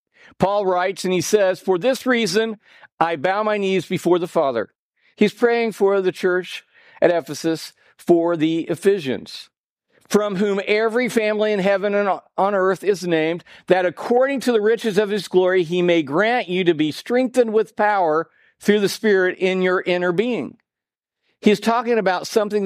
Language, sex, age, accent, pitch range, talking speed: English, male, 50-69, American, 170-215 Hz, 170 wpm